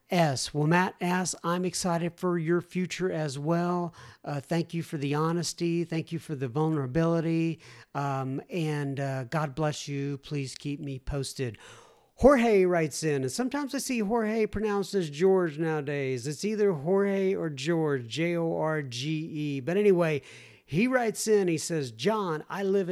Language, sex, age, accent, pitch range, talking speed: English, male, 50-69, American, 155-200 Hz, 155 wpm